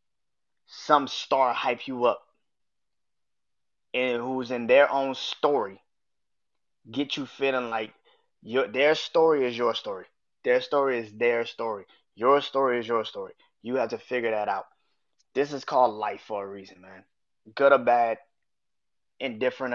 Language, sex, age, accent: English, male, 20-39, American